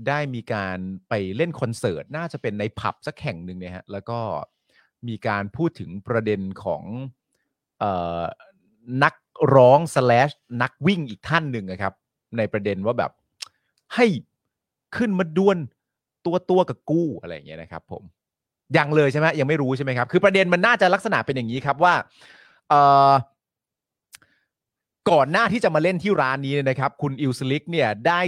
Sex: male